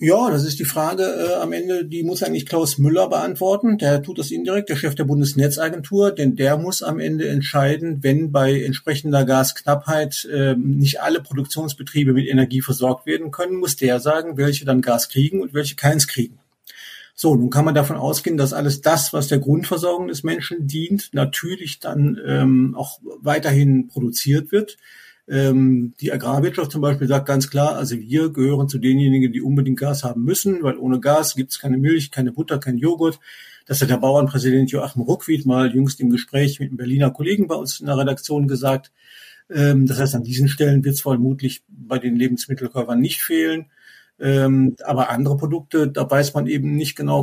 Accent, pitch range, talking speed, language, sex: German, 130-155 Hz, 185 wpm, German, male